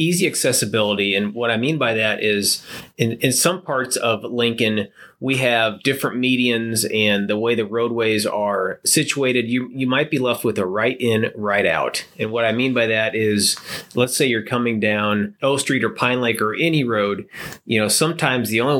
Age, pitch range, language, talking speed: 30-49, 105-125 Hz, English, 200 wpm